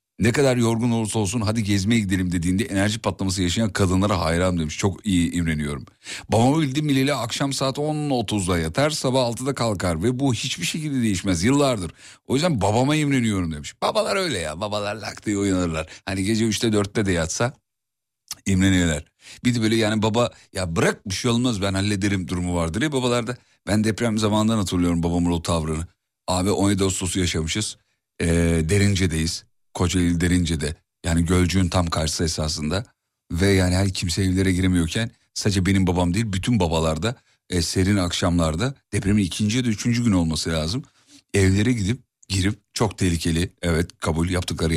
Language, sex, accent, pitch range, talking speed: Turkish, male, native, 90-115 Hz, 165 wpm